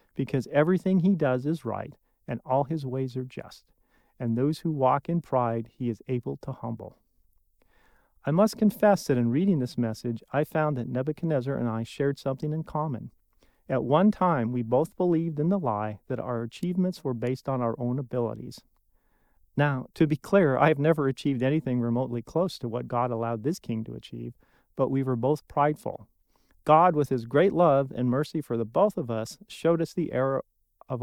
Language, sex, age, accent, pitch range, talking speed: English, male, 40-59, American, 120-155 Hz, 195 wpm